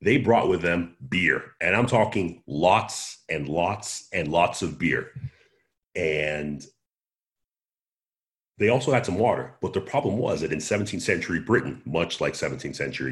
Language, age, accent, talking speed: English, 40-59, American, 155 wpm